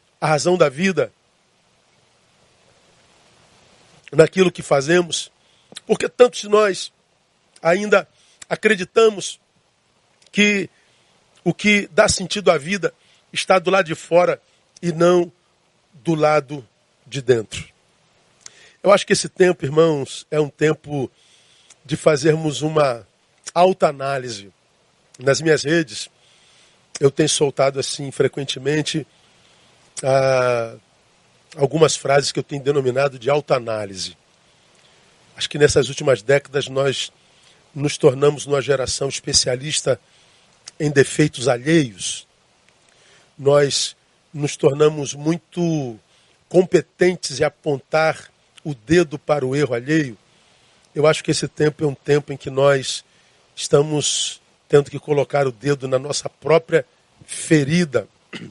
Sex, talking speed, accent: male, 110 wpm, Brazilian